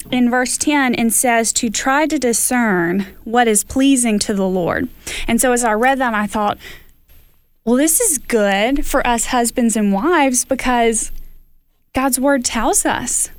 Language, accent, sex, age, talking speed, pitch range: English, American, female, 20-39, 165 wpm, 210-255 Hz